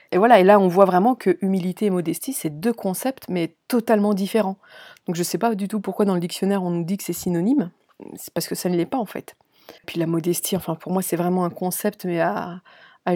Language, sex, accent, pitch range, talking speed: French, female, French, 185-215 Hz, 260 wpm